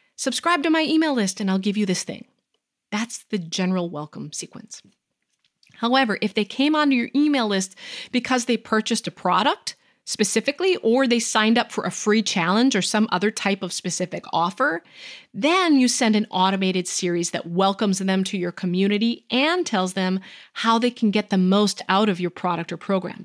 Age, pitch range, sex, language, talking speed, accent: 30-49, 190-245 Hz, female, English, 185 wpm, American